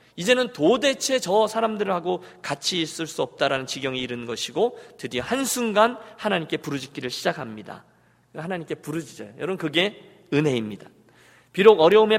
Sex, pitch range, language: male, 155-255 Hz, Korean